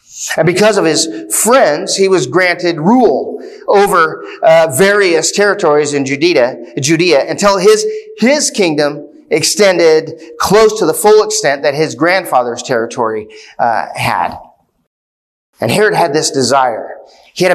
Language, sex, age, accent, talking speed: English, male, 40-59, American, 135 wpm